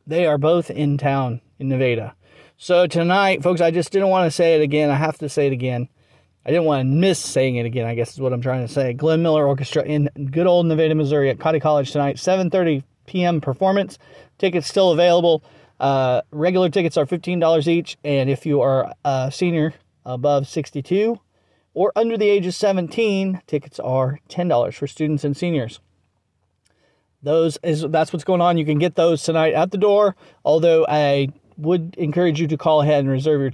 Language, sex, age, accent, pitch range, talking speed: English, male, 40-59, American, 135-175 Hz, 195 wpm